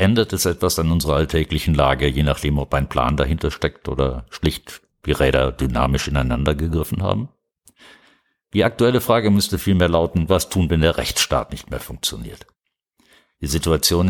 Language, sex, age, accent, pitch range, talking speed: German, male, 60-79, German, 70-95 Hz, 160 wpm